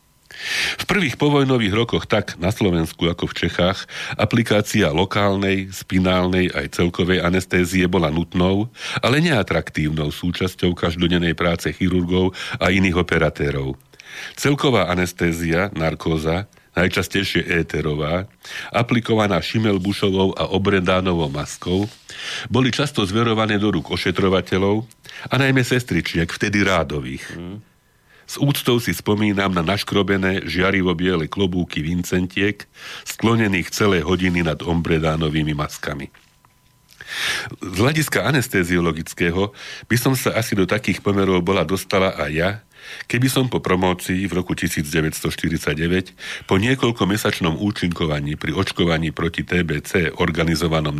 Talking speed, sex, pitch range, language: 110 wpm, male, 85-100 Hz, Slovak